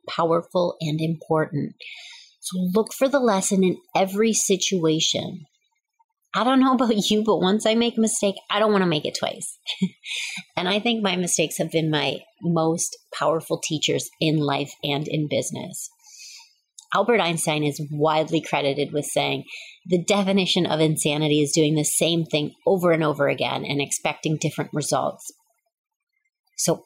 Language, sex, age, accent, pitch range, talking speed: English, female, 30-49, American, 160-230 Hz, 155 wpm